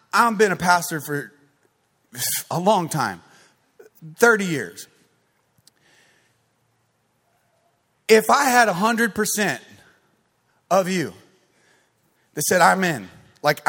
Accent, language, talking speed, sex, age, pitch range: American, English, 100 wpm, male, 30-49, 165-270 Hz